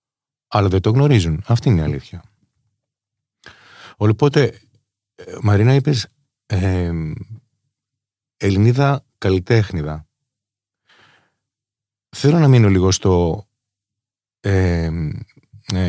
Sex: male